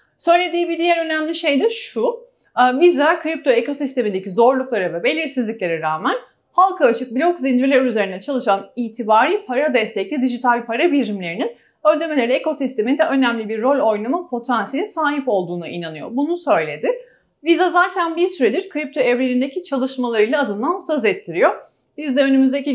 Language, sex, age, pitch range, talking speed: Turkish, female, 30-49, 235-325 Hz, 135 wpm